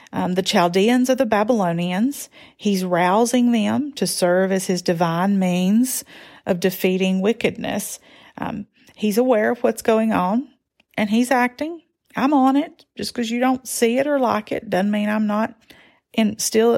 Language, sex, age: English, female, 40-59